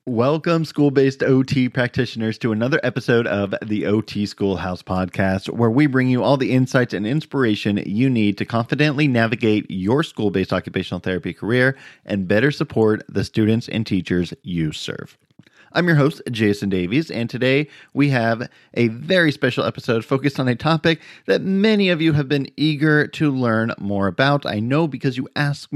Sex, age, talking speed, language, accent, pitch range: male, 30-49, 170 wpm, English, American, 110-145 Hz